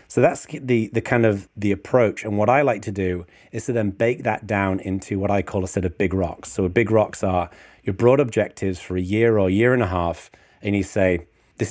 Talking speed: 250 wpm